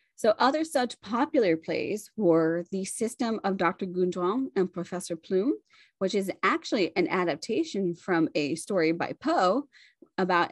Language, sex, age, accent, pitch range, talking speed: English, female, 20-39, American, 175-225 Hz, 145 wpm